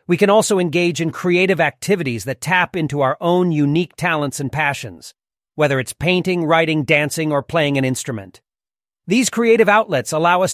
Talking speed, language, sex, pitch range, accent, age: 170 wpm, Hindi, male, 150-195 Hz, American, 40-59